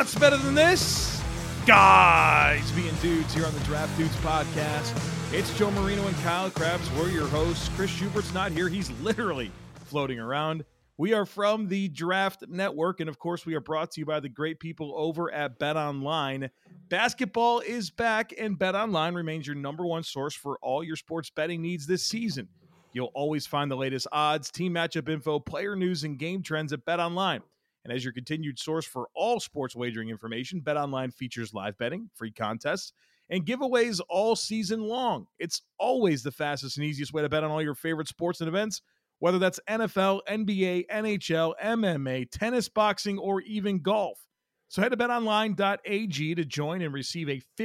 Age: 40-59